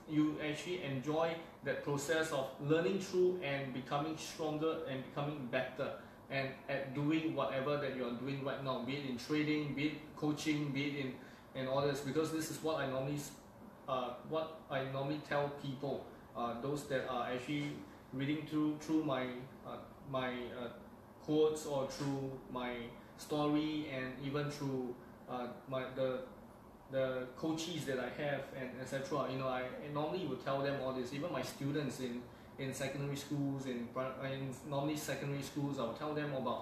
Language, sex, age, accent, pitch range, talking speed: English, male, 20-39, Malaysian, 130-150 Hz, 170 wpm